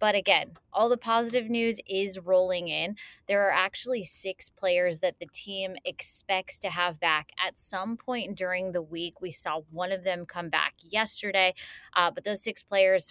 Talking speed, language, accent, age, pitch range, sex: 185 wpm, English, American, 20-39, 170-215 Hz, female